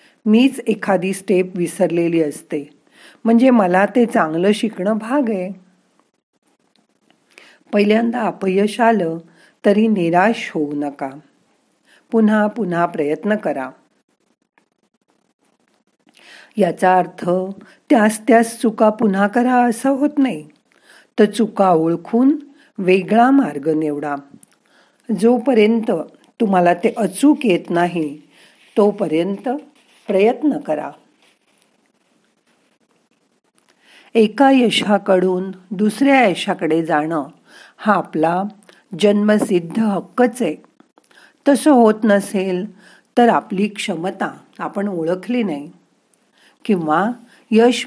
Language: Marathi